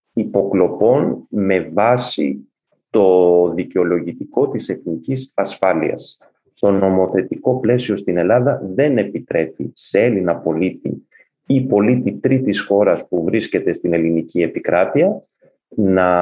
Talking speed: 105 wpm